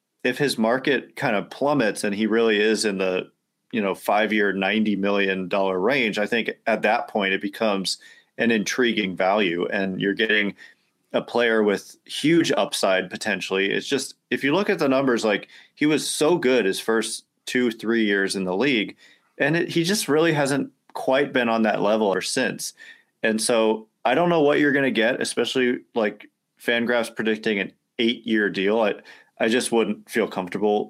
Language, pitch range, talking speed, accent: English, 100-125 Hz, 185 wpm, American